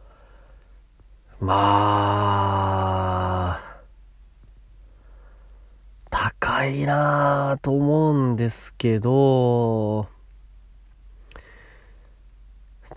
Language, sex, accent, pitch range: Japanese, male, native, 90-135 Hz